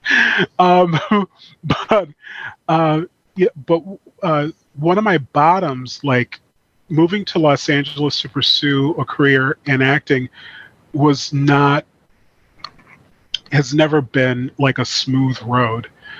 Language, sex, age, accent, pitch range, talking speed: English, male, 30-49, American, 130-160 Hz, 105 wpm